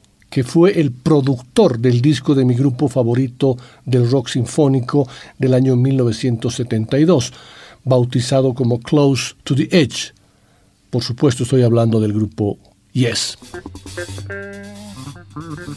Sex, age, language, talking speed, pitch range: male, 60-79, Spanish, 110 wpm, 120-160 Hz